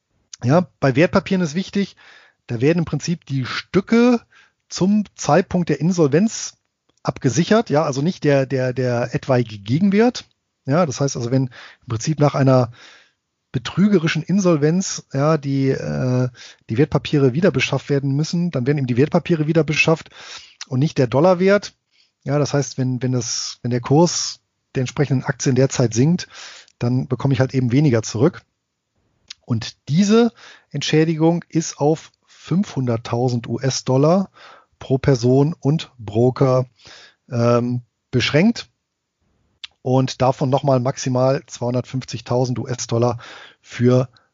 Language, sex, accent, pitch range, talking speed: German, male, German, 125-165 Hz, 130 wpm